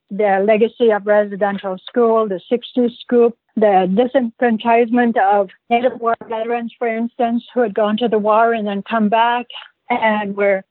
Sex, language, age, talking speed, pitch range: female, English, 60-79, 155 wpm, 205-245 Hz